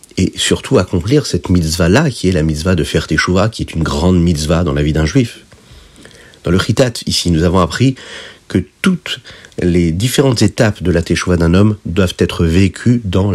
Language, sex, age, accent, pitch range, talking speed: French, male, 50-69, French, 85-105 Hz, 195 wpm